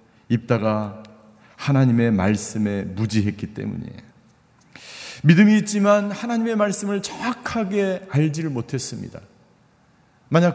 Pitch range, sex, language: 125-170 Hz, male, Korean